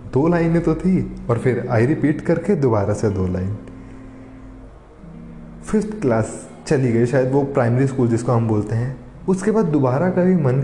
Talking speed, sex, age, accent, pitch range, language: 170 wpm, male, 20-39, native, 115-170 Hz, Hindi